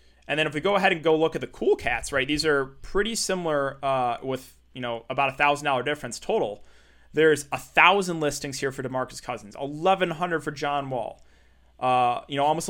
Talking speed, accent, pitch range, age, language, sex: 215 wpm, American, 130-170 Hz, 20-39, English, male